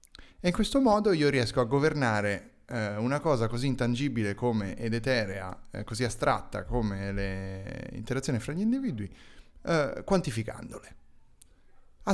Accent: native